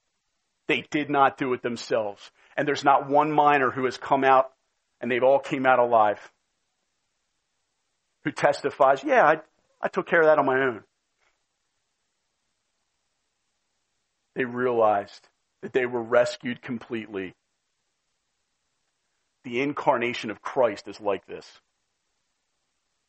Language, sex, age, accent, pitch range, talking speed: English, male, 40-59, American, 130-170 Hz, 120 wpm